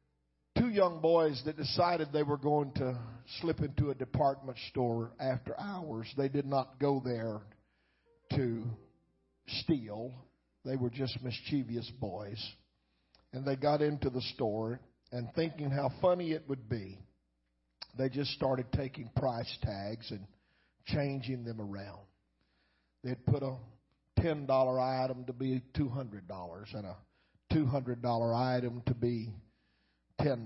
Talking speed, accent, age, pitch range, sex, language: 130 wpm, American, 50-69, 115-145 Hz, male, English